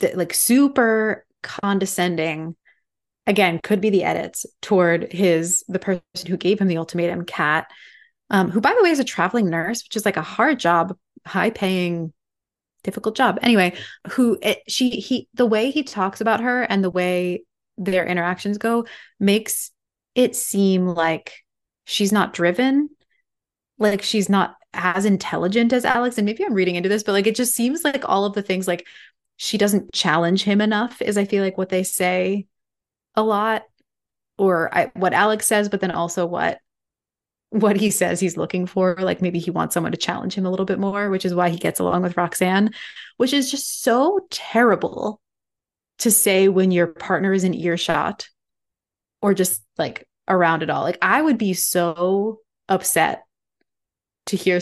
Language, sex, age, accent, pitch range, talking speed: English, female, 20-39, American, 180-215 Hz, 175 wpm